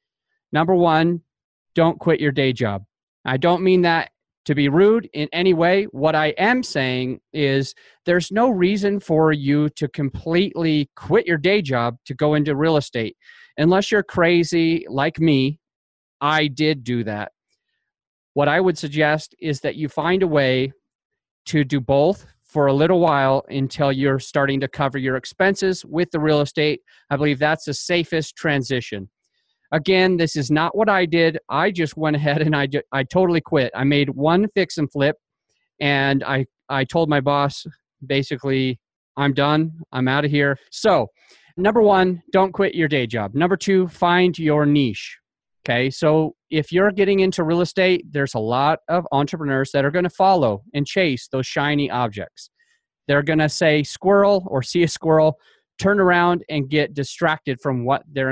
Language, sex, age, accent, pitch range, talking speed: English, male, 30-49, American, 140-175 Hz, 170 wpm